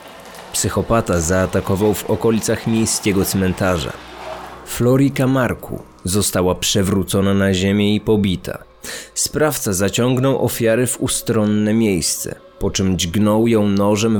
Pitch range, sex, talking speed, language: 90-120 Hz, male, 105 wpm, Polish